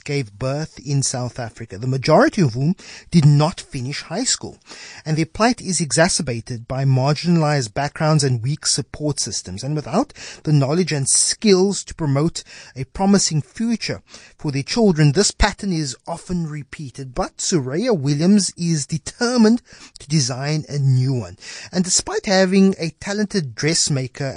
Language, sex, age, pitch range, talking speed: English, male, 30-49, 135-185 Hz, 150 wpm